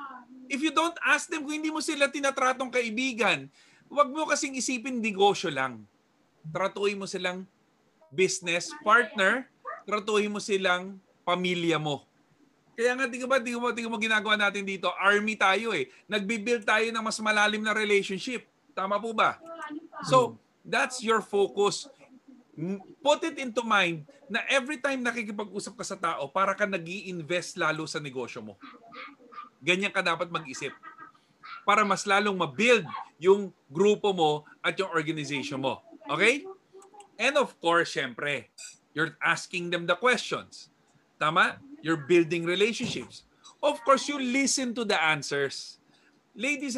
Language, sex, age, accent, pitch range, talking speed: Filipino, male, 30-49, native, 175-255 Hz, 140 wpm